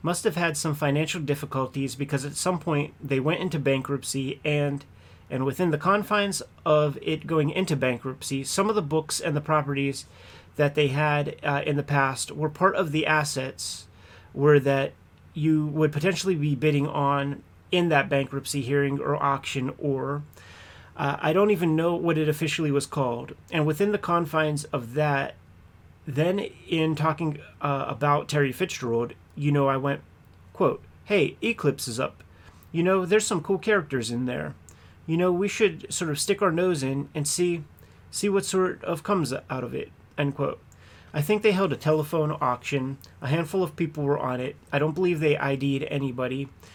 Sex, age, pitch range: male, 30-49, 135-160 Hz